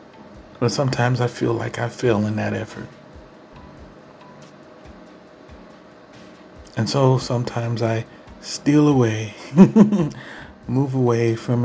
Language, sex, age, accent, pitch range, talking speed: English, male, 40-59, American, 110-130 Hz, 100 wpm